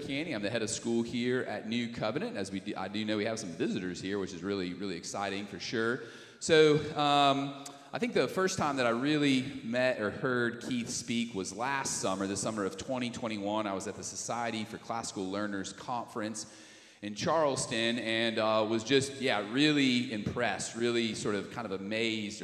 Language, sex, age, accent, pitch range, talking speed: English, male, 30-49, American, 100-130 Hz, 195 wpm